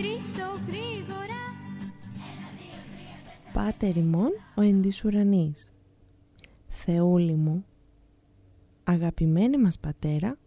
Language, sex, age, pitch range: Greek, female, 20-39, 155-215 Hz